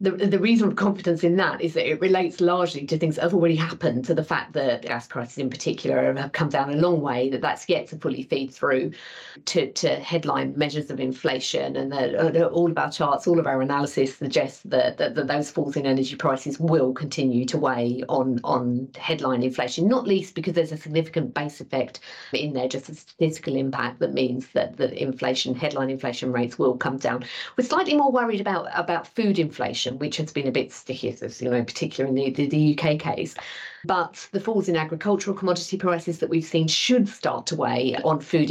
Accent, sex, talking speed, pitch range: British, female, 220 wpm, 135-175 Hz